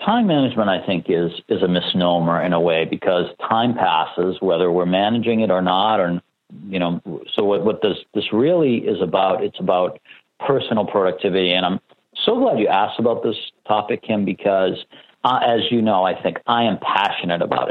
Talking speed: 190 wpm